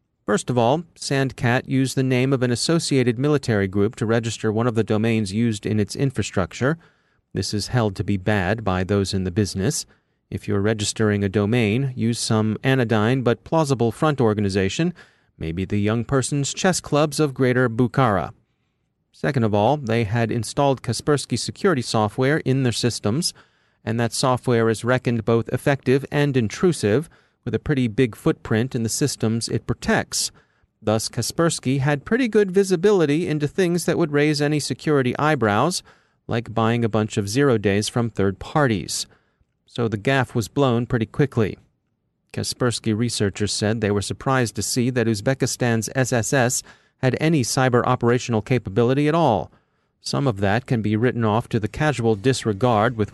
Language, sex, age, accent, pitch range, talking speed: English, male, 30-49, American, 110-135 Hz, 165 wpm